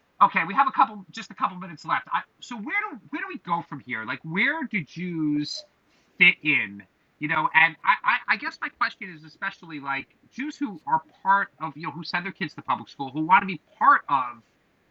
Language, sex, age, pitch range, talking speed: English, male, 30-49, 145-195 Hz, 230 wpm